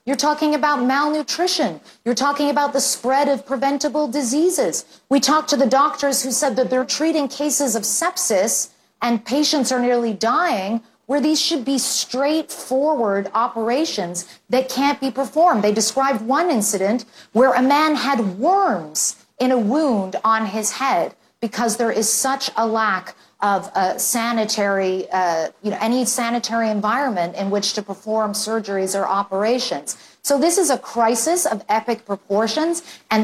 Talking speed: 155 wpm